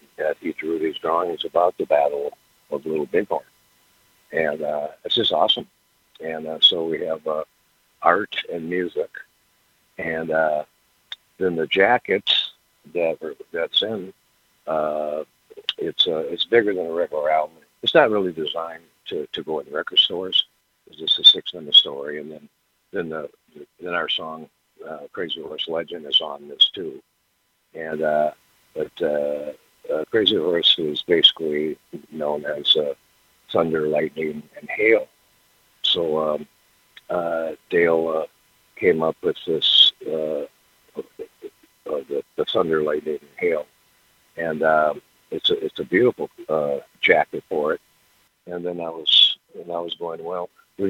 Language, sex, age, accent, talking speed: English, male, 60-79, American, 150 wpm